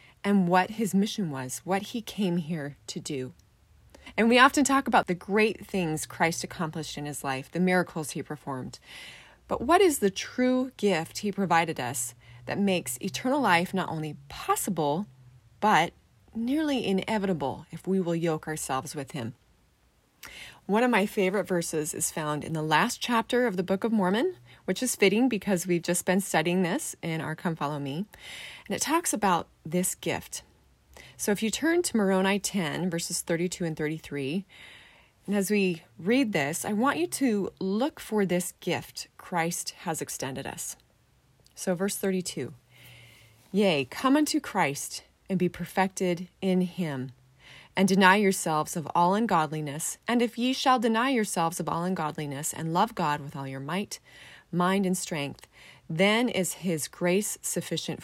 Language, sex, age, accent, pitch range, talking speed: English, female, 20-39, American, 155-205 Hz, 165 wpm